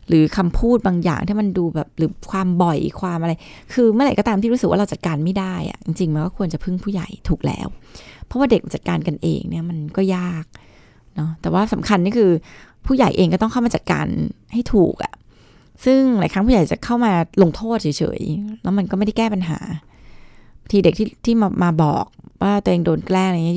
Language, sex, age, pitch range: Thai, female, 20-39, 170-210 Hz